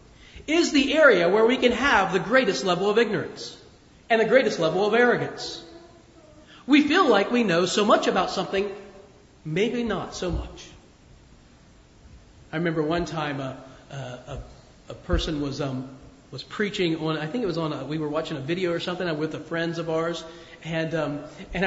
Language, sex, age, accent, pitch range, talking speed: English, male, 40-59, American, 155-230 Hz, 180 wpm